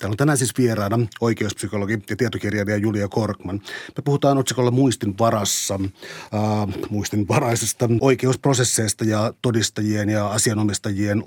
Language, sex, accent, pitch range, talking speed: Finnish, male, native, 105-120 Hz, 115 wpm